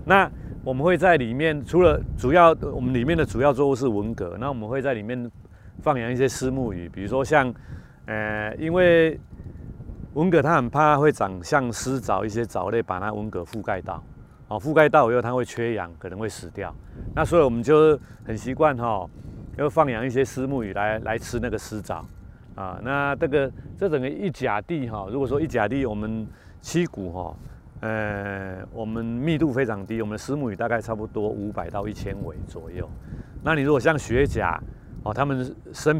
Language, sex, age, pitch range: Chinese, male, 30-49, 105-135 Hz